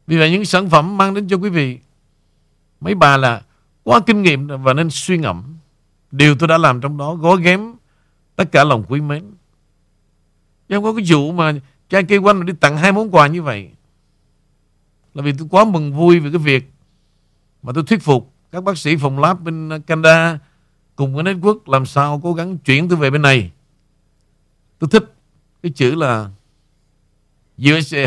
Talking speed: 185 wpm